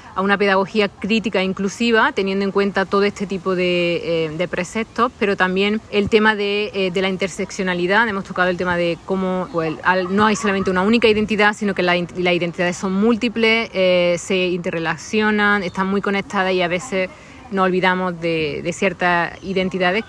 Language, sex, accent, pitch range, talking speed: Spanish, female, Argentinian, 170-200 Hz, 170 wpm